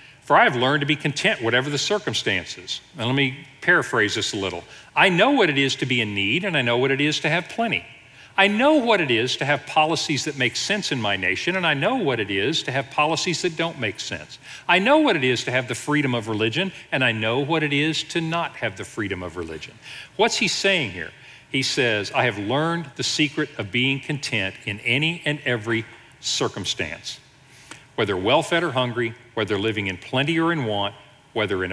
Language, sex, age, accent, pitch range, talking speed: English, male, 50-69, American, 115-160 Hz, 225 wpm